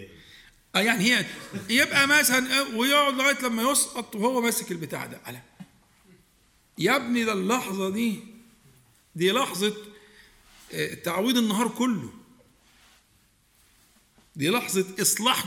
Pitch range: 185-255 Hz